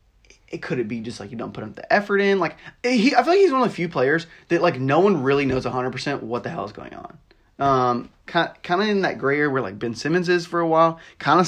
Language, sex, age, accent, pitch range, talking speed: English, male, 20-39, American, 130-170 Hz, 290 wpm